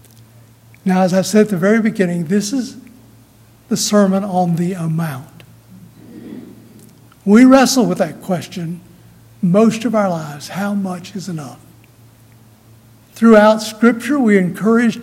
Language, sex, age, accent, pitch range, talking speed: English, male, 60-79, American, 150-215 Hz, 130 wpm